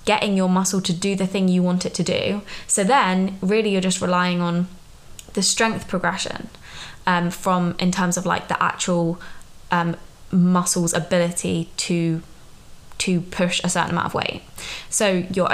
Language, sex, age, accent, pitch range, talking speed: English, female, 20-39, British, 175-195 Hz, 165 wpm